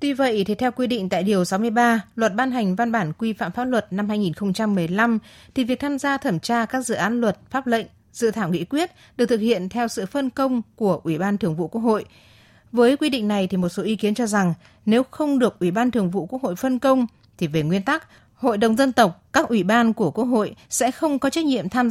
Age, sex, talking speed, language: 20-39, female, 250 wpm, Vietnamese